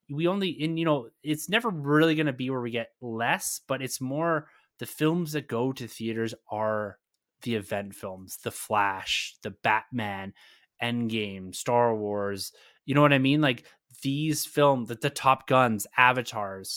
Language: English